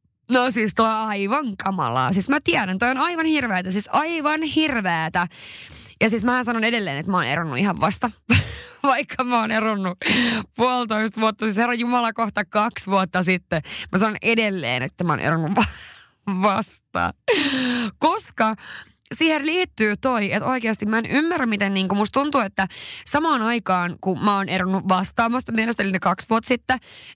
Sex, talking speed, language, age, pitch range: female, 160 wpm, Finnish, 20-39, 180-230 Hz